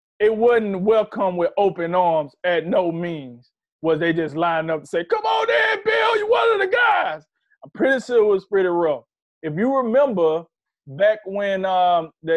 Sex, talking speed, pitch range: male, 185 wpm, 155-240 Hz